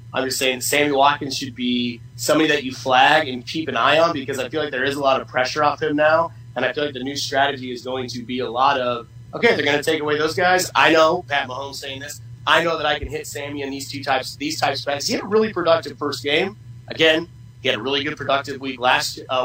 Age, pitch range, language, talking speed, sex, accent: 30-49, 125-150 Hz, English, 275 wpm, male, American